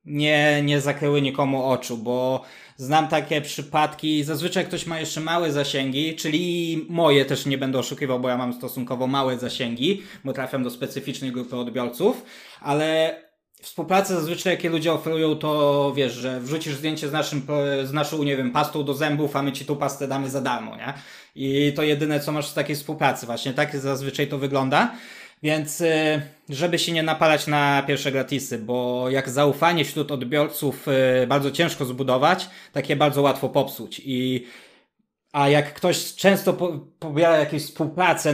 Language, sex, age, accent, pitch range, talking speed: Polish, male, 20-39, native, 135-155 Hz, 160 wpm